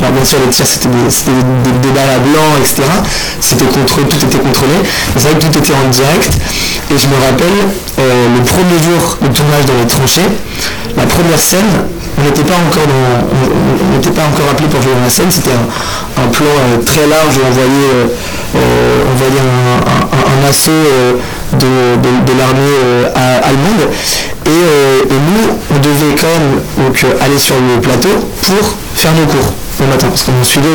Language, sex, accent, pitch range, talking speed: French, male, French, 130-150 Hz, 185 wpm